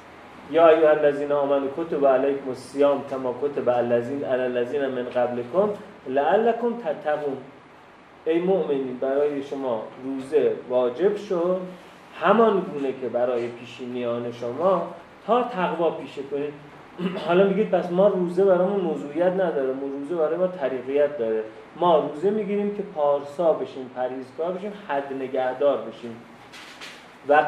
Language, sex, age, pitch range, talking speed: Persian, male, 30-49, 130-185 Hz, 125 wpm